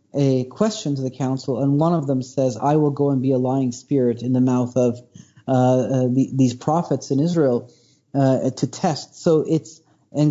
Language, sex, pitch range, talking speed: English, male, 130-155 Hz, 205 wpm